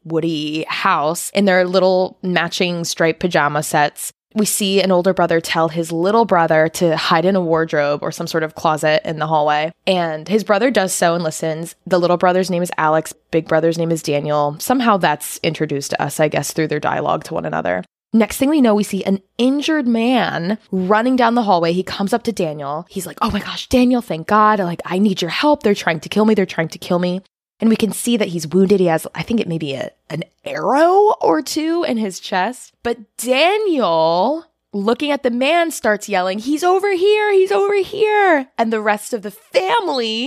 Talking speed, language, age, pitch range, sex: 215 wpm, English, 20-39, 165-220 Hz, female